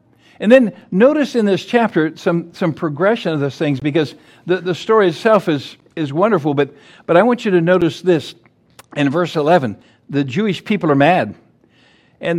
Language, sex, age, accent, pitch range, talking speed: English, male, 60-79, American, 165-215 Hz, 180 wpm